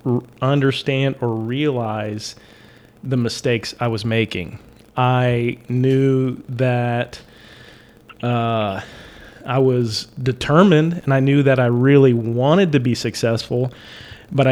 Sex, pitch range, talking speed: male, 120-140 Hz, 110 wpm